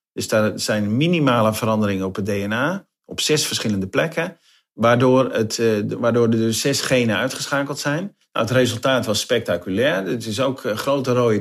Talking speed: 160 wpm